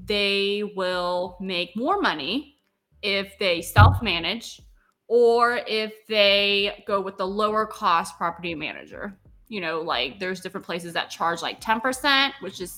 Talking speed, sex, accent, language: 140 wpm, female, American, English